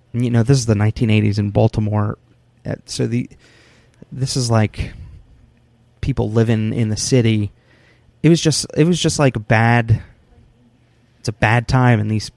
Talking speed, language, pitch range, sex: 165 wpm, English, 110-125 Hz, male